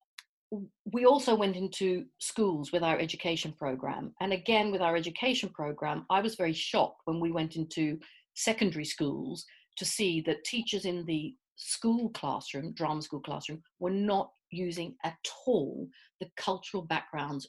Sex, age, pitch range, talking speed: female, 50-69, 155-210 Hz, 150 wpm